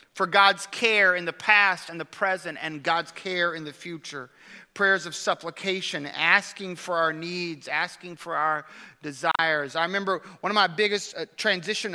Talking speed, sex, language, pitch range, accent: 170 wpm, male, English, 165-210 Hz, American